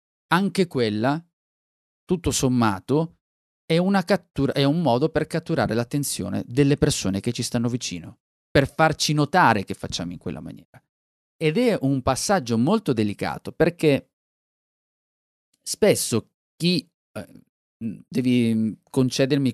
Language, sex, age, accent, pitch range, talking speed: Italian, male, 30-49, native, 105-145 Hz, 120 wpm